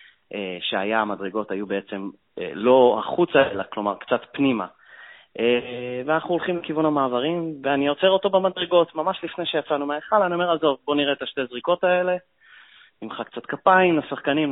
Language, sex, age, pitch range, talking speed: Hebrew, male, 30-49, 105-160 Hz, 160 wpm